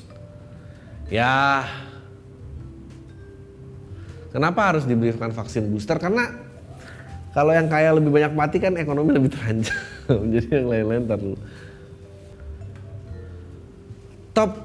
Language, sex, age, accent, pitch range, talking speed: Indonesian, male, 20-39, native, 100-145 Hz, 95 wpm